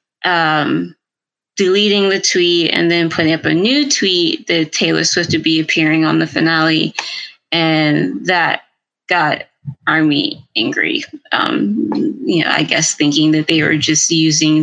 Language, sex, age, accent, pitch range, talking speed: English, female, 20-39, American, 160-200 Hz, 150 wpm